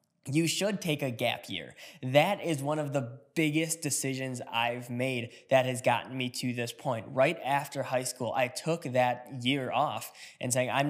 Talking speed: 185 wpm